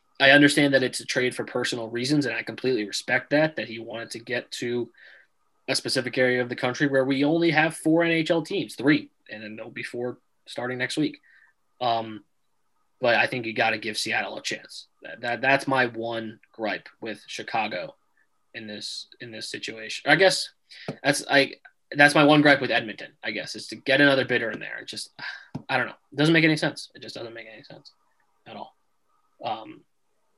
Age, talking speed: 20-39, 205 wpm